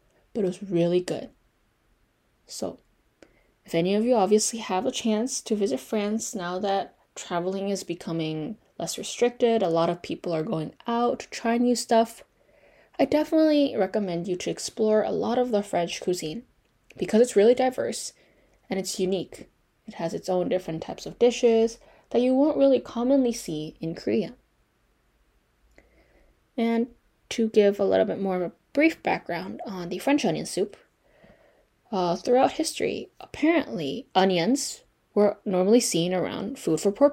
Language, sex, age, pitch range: Korean, female, 10-29, 180-240 Hz